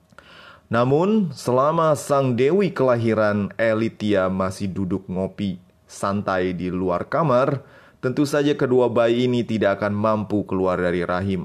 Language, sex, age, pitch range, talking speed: Indonesian, male, 20-39, 95-130 Hz, 125 wpm